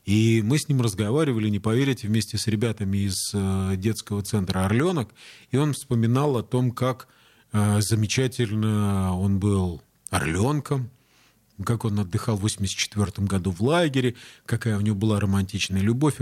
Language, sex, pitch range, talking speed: Russian, male, 100-120 Hz, 140 wpm